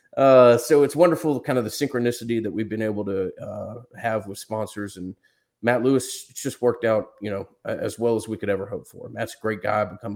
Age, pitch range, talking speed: 30-49, 100-110 Hz, 235 wpm